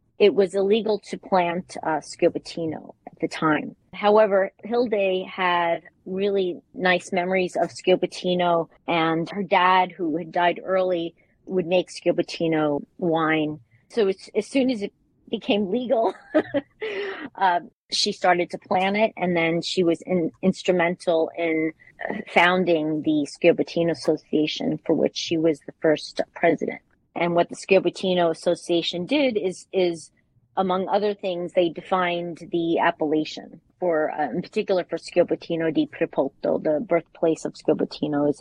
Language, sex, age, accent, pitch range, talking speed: English, female, 30-49, American, 160-200 Hz, 135 wpm